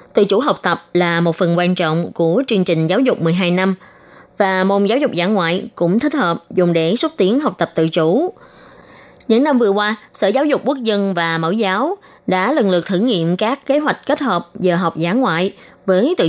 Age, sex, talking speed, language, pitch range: 20-39, female, 225 wpm, Vietnamese, 180-230 Hz